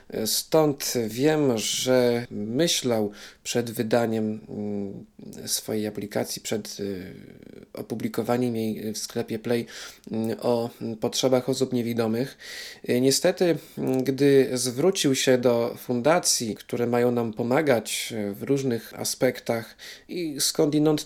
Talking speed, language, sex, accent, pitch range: 95 wpm, Polish, male, native, 115-140 Hz